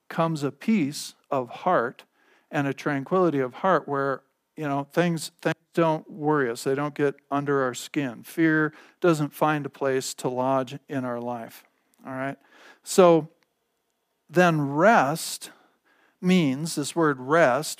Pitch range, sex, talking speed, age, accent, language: 140-160 Hz, male, 145 wpm, 50-69, American, English